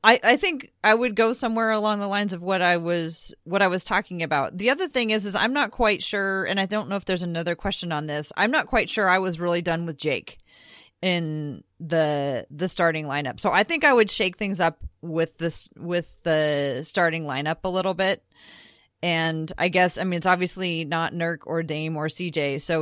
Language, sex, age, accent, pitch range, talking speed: English, female, 30-49, American, 155-185 Hz, 220 wpm